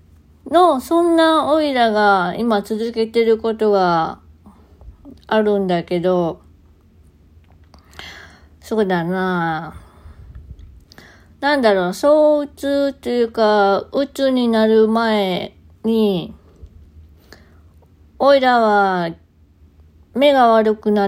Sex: female